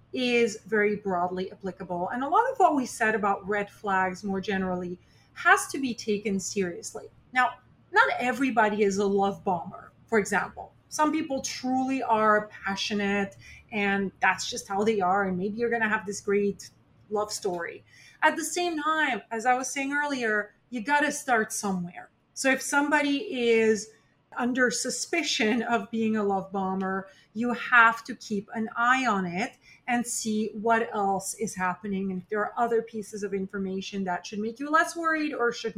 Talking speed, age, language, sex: 175 wpm, 30-49, English, female